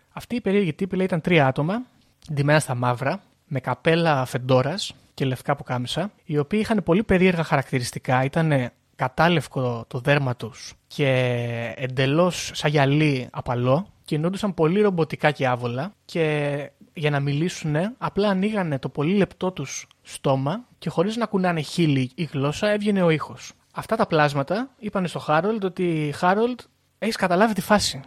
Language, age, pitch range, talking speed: Greek, 30-49, 135-185 Hz, 150 wpm